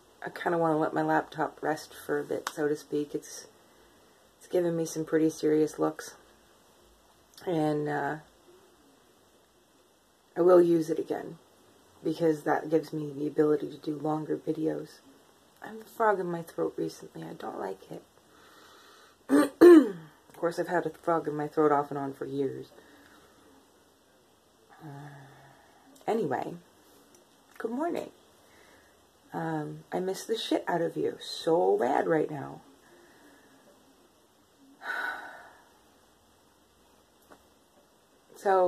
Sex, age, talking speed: female, 30-49, 130 wpm